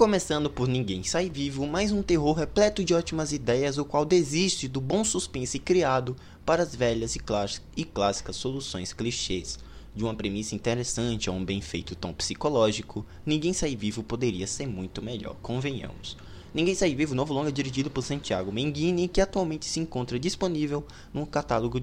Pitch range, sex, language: 100-150 Hz, male, Portuguese